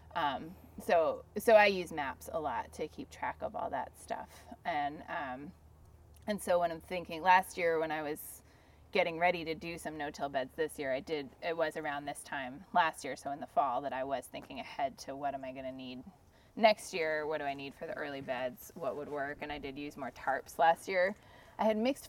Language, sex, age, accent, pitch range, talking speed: English, female, 20-39, American, 150-225 Hz, 230 wpm